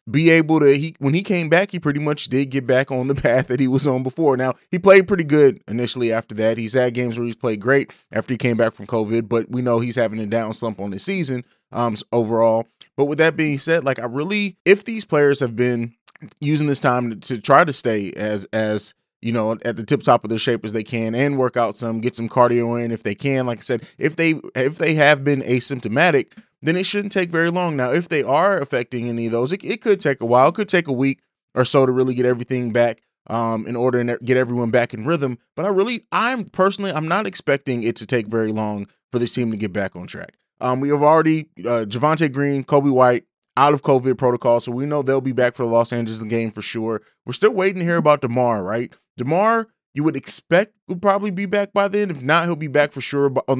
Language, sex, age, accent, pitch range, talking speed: English, male, 20-39, American, 120-150 Hz, 250 wpm